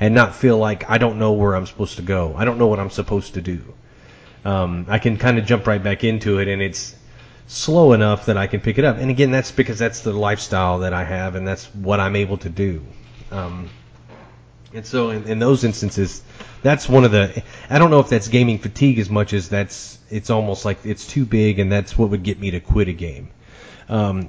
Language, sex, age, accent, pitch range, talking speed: English, male, 30-49, American, 100-120 Hz, 235 wpm